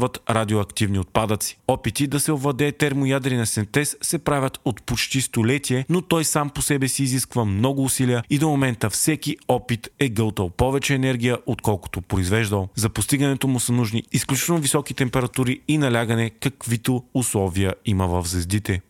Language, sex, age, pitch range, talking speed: Bulgarian, male, 30-49, 115-140 Hz, 155 wpm